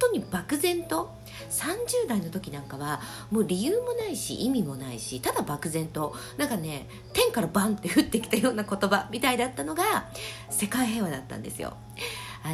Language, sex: Japanese, female